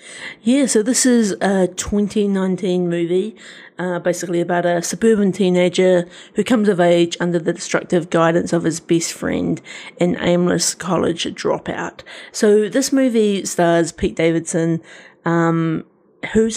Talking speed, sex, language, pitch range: 135 wpm, female, English, 175-200 Hz